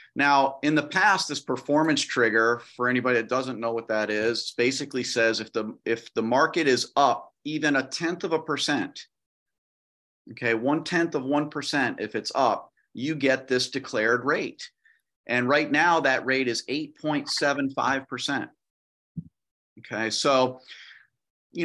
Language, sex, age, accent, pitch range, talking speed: English, male, 40-59, American, 120-150 Hz, 145 wpm